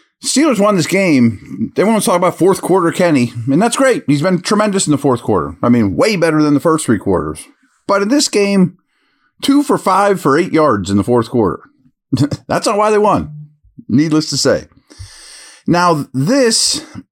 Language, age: English, 40-59